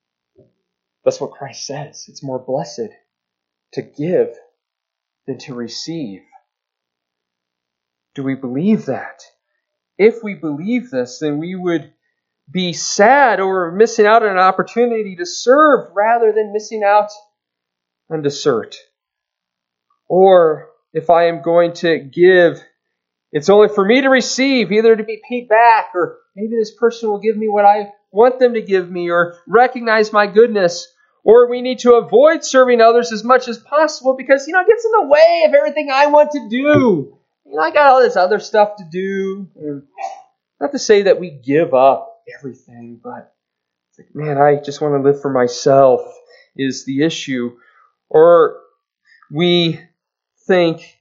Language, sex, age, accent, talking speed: English, male, 30-49, American, 155 wpm